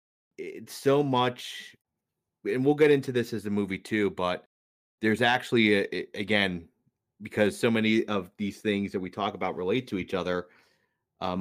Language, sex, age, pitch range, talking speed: English, male, 30-49, 95-110 Hz, 175 wpm